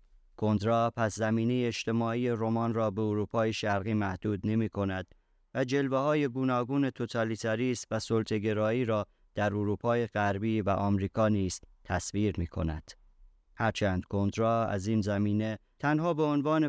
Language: Persian